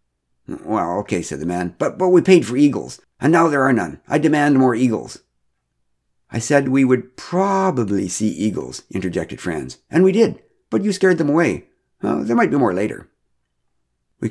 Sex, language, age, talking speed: male, English, 60-79, 185 wpm